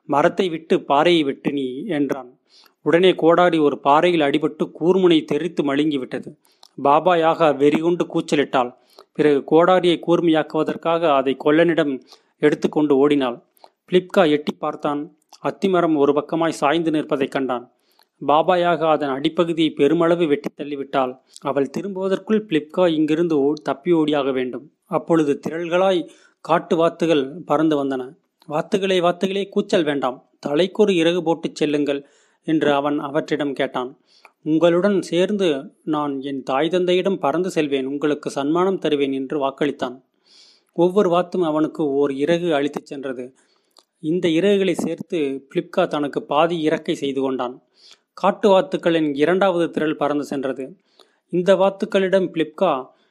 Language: Tamil